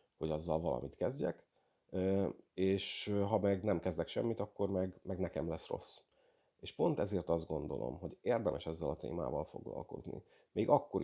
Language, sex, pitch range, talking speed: Hungarian, male, 85-100 Hz, 160 wpm